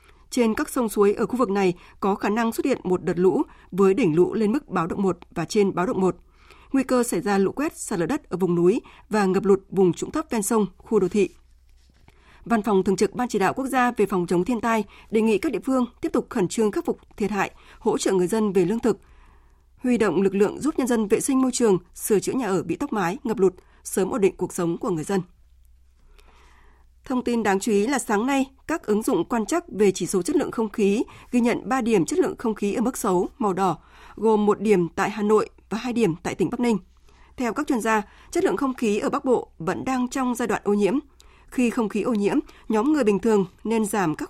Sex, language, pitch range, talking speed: female, Vietnamese, 185-245 Hz, 255 wpm